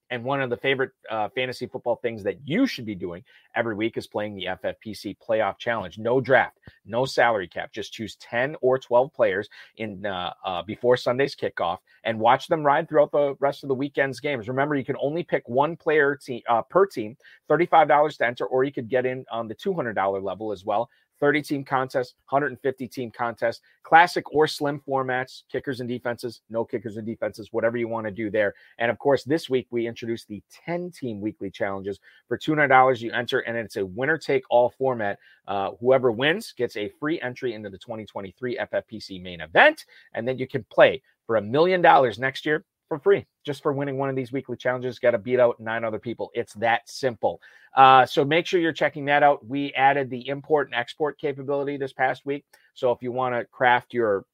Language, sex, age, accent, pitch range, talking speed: English, male, 30-49, American, 115-140 Hz, 205 wpm